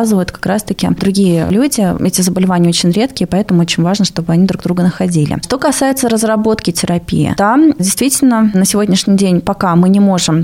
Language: Russian